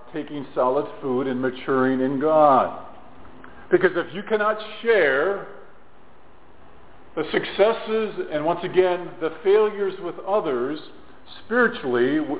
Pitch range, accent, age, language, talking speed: 145-200 Hz, American, 50-69, English, 105 wpm